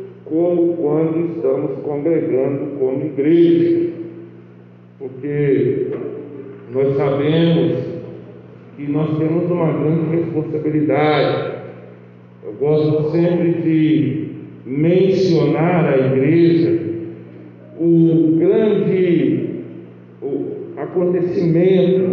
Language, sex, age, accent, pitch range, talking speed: Portuguese, male, 50-69, Brazilian, 160-195 Hz, 70 wpm